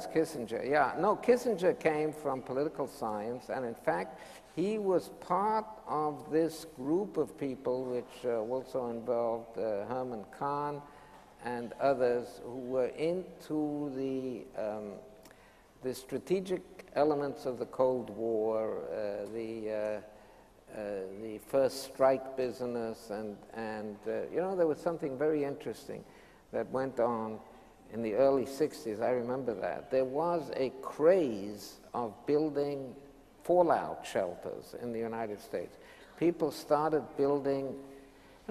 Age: 60-79